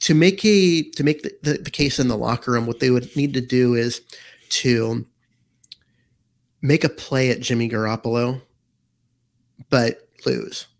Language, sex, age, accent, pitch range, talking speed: English, male, 30-49, American, 115-135 Hz, 165 wpm